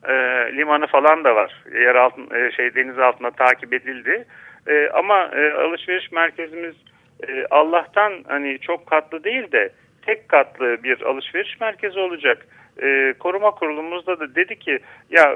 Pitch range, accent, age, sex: 140-180 Hz, native, 40-59, male